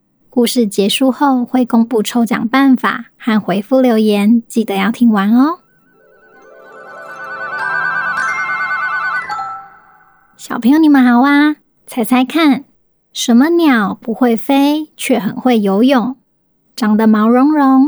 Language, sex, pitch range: Chinese, male, 215-265 Hz